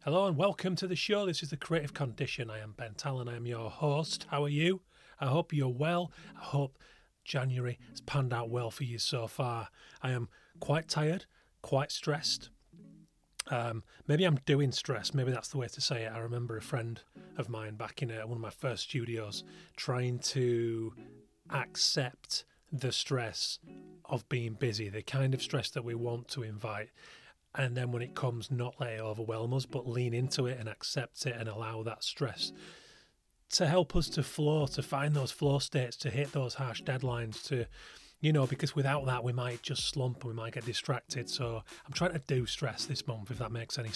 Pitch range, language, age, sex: 115-145 Hz, English, 30-49, male